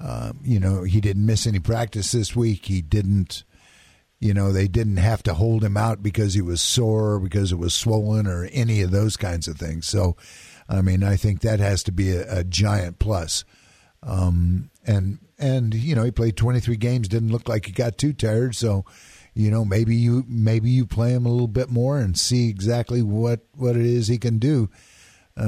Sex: male